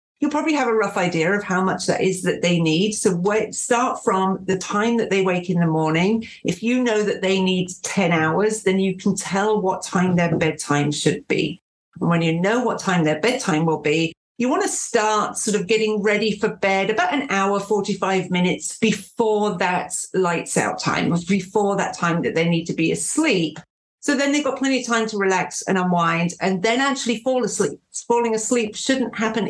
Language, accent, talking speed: English, British, 205 wpm